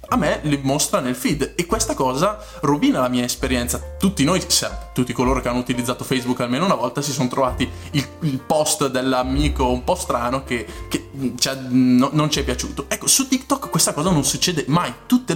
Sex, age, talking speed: male, 20-39, 190 wpm